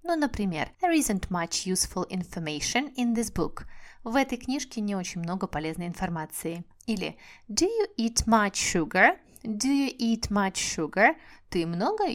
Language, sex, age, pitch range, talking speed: Russian, female, 30-49, 170-225 Hz, 155 wpm